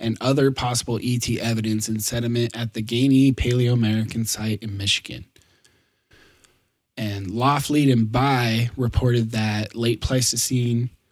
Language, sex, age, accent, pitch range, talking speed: English, male, 20-39, American, 110-125 Hz, 125 wpm